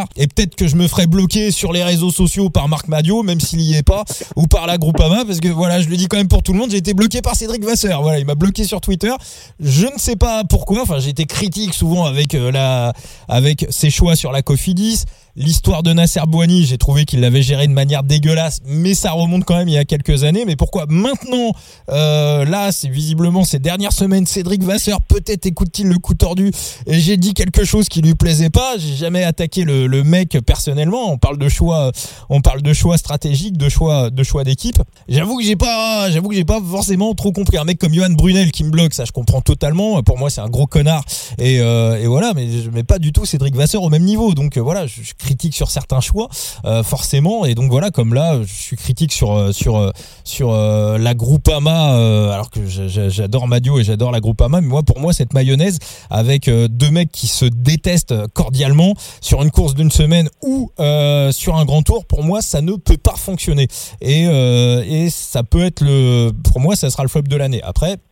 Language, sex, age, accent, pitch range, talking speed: French, male, 20-39, French, 130-175 Hz, 230 wpm